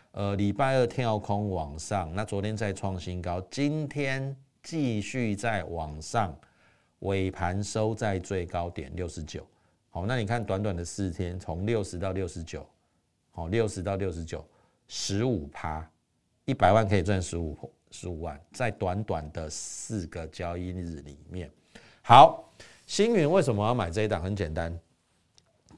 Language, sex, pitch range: Chinese, male, 90-120 Hz